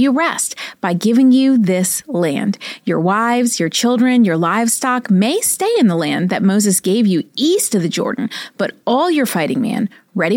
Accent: American